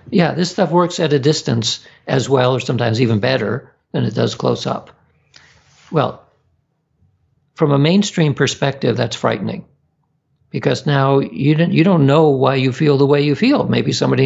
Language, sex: English, male